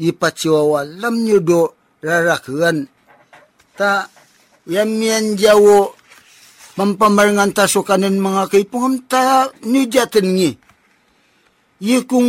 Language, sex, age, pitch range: Chinese, male, 50-69, 170-210 Hz